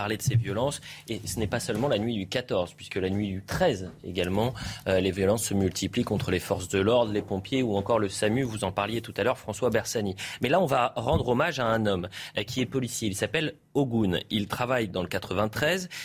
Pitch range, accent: 110-155 Hz, French